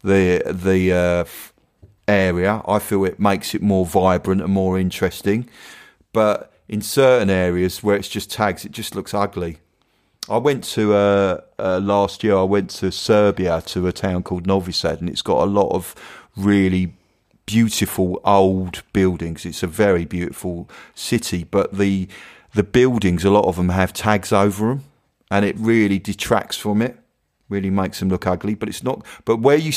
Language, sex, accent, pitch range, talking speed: English, male, British, 95-110 Hz, 175 wpm